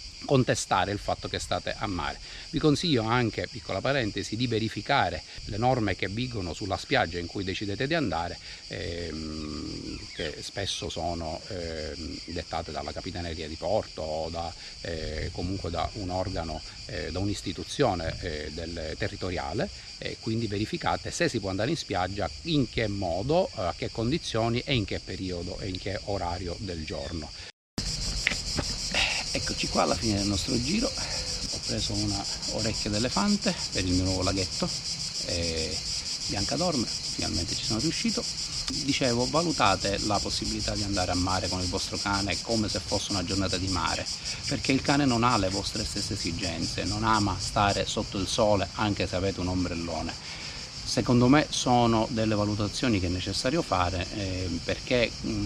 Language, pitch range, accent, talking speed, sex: Italian, 90-115 Hz, native, 160 wpm, male